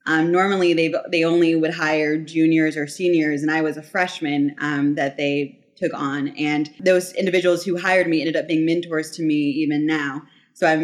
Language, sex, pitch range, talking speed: English, female, 155-180 Hz, 195 wpm